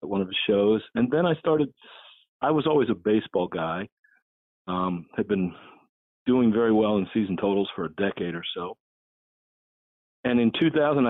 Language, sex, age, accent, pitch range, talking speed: English, male, 40-59, American, 90-125 Hz, 175 wpm